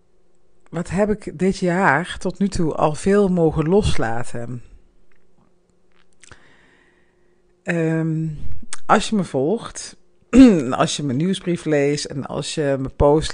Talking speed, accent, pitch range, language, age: 115 wpm, Dutch, 145-185 Hz, Dutch, 50-69